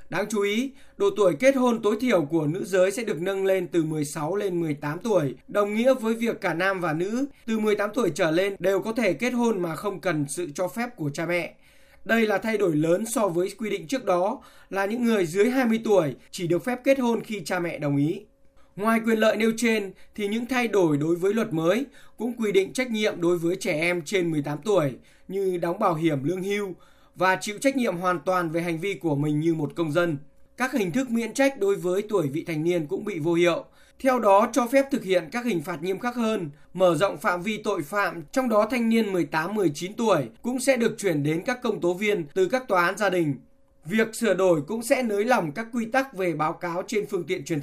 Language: Vietnamese